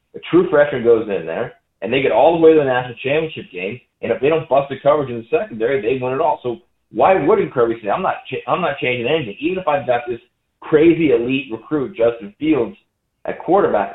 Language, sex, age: English, male, 30-49